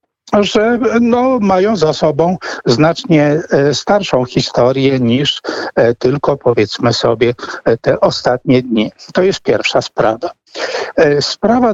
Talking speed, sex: 95 wpm, male